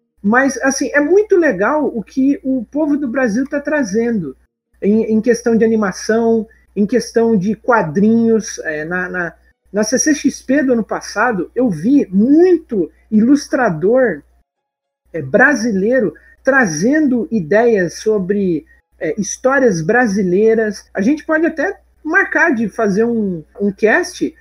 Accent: Brazilian